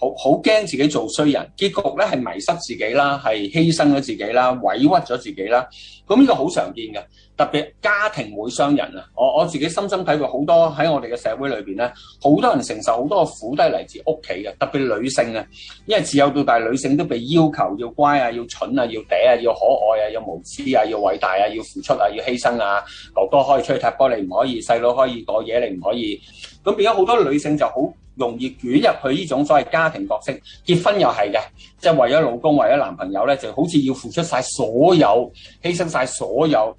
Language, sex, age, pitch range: Chinese, male, 30-49, 125-180 Hz